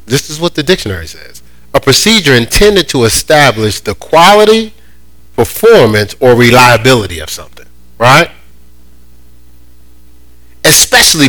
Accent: American